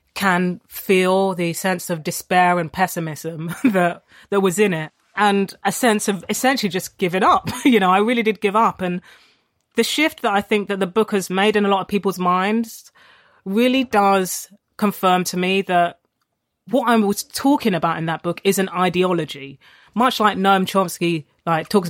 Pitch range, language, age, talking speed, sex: 170-205 Hz, English, 30-49, 185 wpm, female